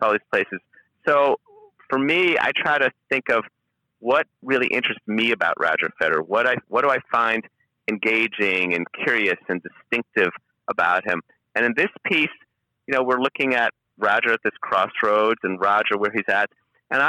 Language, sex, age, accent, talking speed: English, male, 40-59, American, 175 wpm